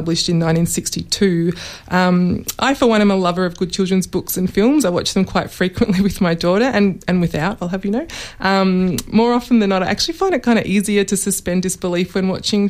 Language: English